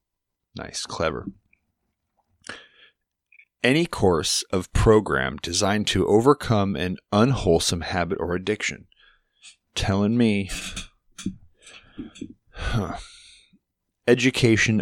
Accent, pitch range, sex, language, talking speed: American, 95-115 Hz, male, English, 70 wpm